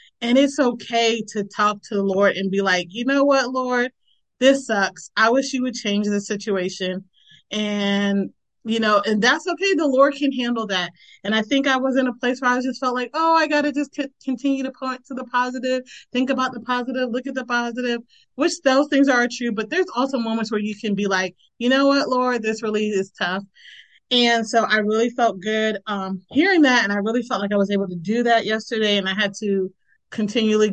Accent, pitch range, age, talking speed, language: American, 205-260 Hz, 30-49, 225 wpm, English